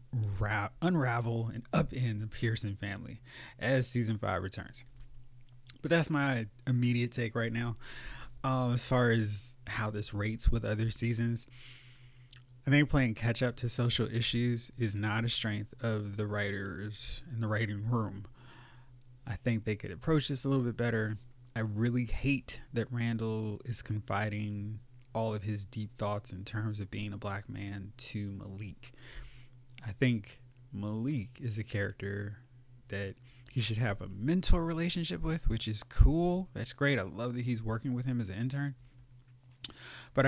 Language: English